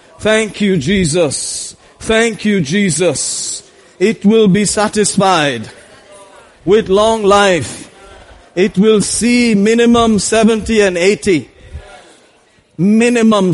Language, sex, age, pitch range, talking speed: English, male, 40-59, 200-240 Hz, 95 wpm